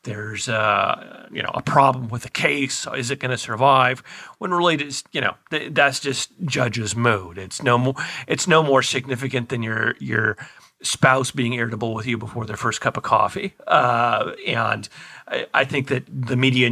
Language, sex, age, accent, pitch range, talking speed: English, male, 40-59, American, 110-130 Hz, 175 wpm